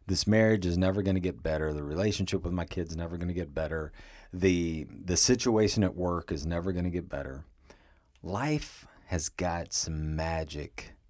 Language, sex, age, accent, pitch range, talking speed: English, male, 40-59, American, 80-115 Hz, 190 wpm